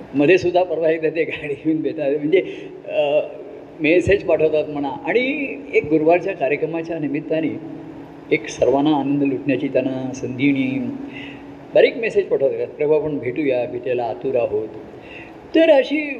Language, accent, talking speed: Marathi, native, 120 wpm